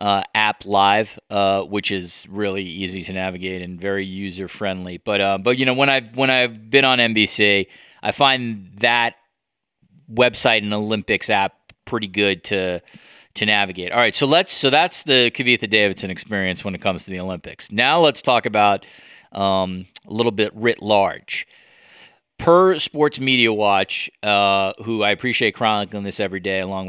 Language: English